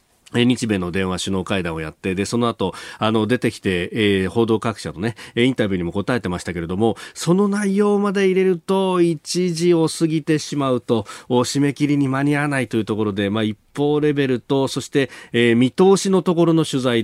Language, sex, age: Japanese, male, 40-59